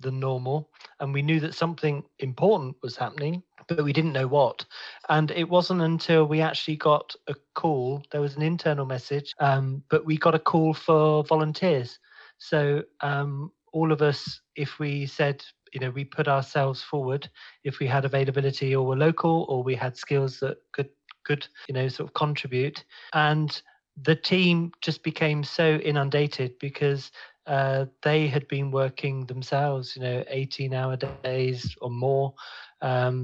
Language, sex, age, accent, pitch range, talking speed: English, male, 30-49, British, 135-160 Hz, 165 wpm